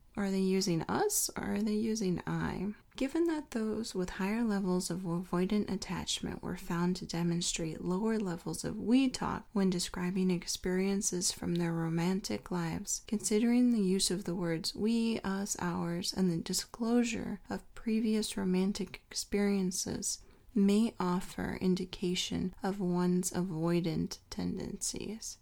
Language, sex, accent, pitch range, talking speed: English, female, American, 180-225 Hz, 135 wpm